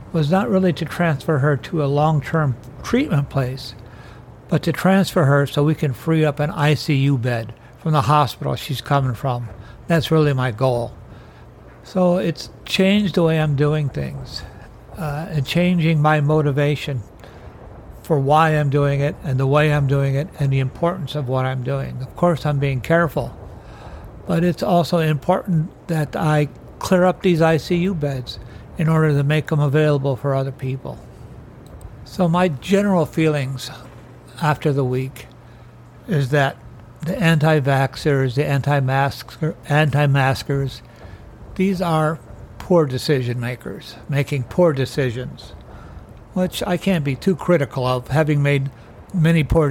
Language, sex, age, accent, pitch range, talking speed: English, male, 60-79, American, 130-160 Hz, 145 wpm